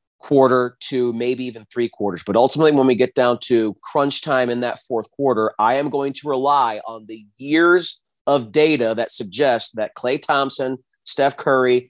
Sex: male